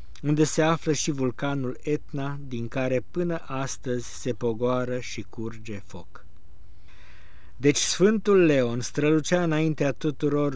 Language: Romanian